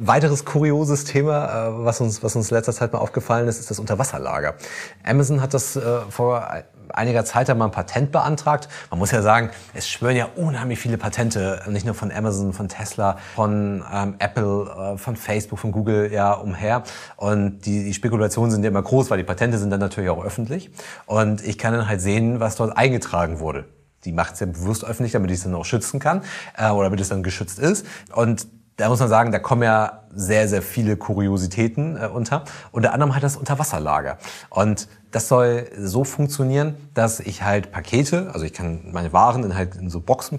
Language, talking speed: German, 200 wpm